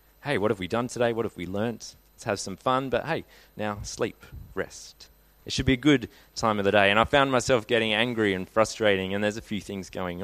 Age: 20-39